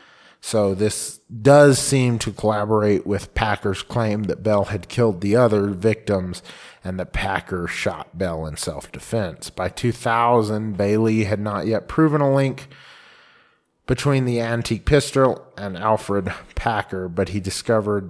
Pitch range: 95-115 Hz